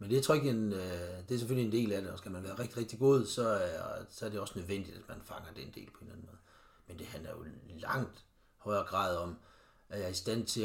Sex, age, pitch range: male, 60-79, 100-120 Hz